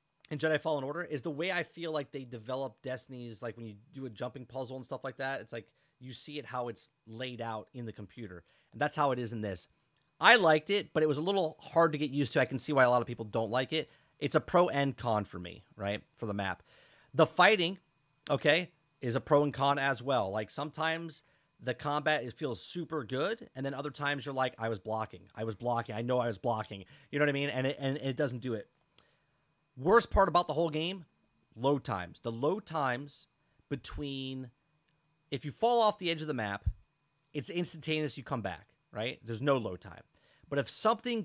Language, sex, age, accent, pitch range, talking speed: English, male, 30-49, American, 125-160 Hz, 230 wpm